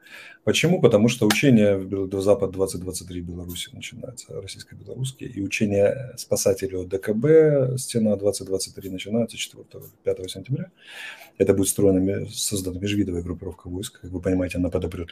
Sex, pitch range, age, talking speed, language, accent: male, 95-125 Hz, 30-49, 120 wpm, Russian, native